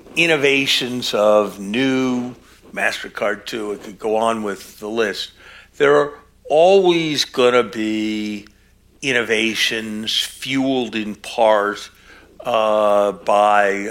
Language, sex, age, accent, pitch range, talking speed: English, male, 60-79, American, 105-125 Hz, 105 wpm